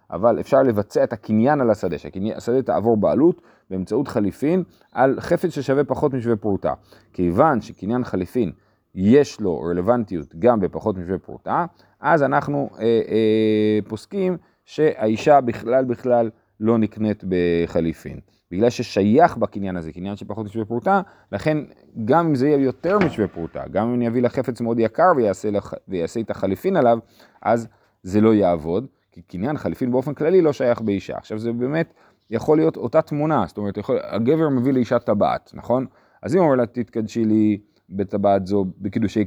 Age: 30-49